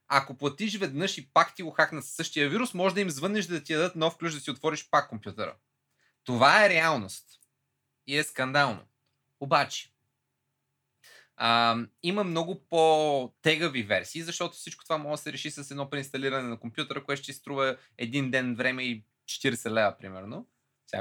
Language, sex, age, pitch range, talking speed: Bulgarian, male, 20-39, 130-180 Hz, 170 wpm